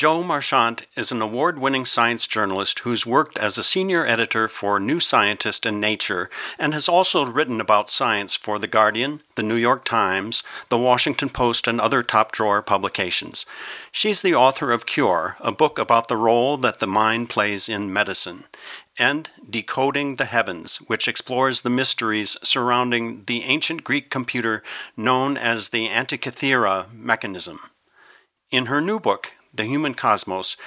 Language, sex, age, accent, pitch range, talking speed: English, male, 60-79, American, 110-135 Hz, 155 wpm